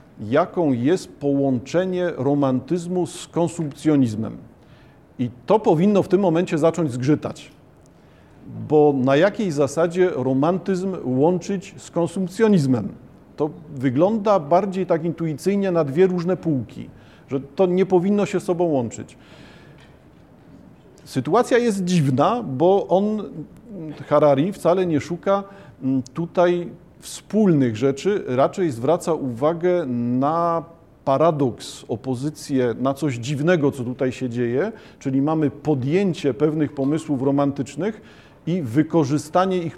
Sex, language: male, Polish